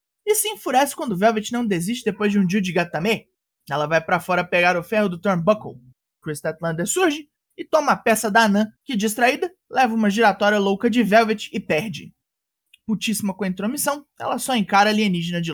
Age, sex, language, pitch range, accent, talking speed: 20-39, male, Portuguese, 185-230 Hz, Brazilian, 195 wpm